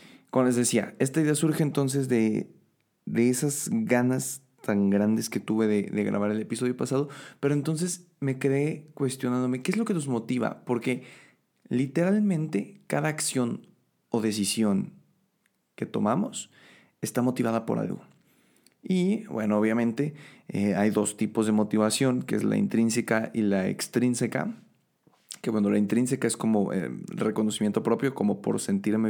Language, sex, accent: Spanish, male, Mexican